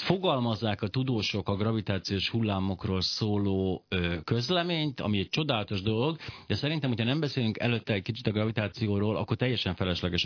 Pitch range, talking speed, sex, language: 95-125 Hz, 150 wpm, male, Hungarian